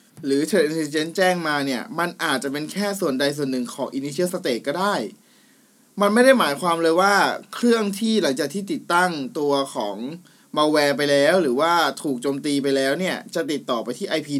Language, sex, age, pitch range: Thai, male, 20-39, 135-185 Hz